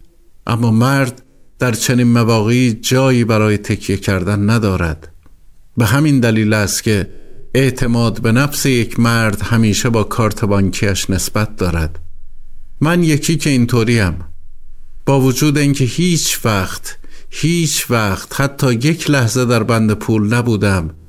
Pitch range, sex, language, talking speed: 100-130 Hz, male, Persian, 125 wpm